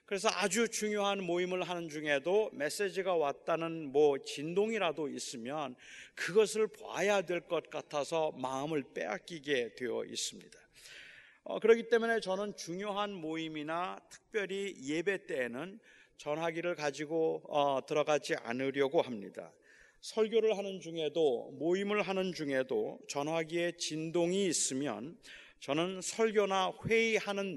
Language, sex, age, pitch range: Korean, male, 30-49, 160-205 Hz